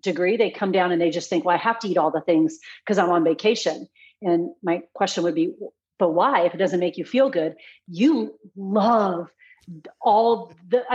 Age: 40-59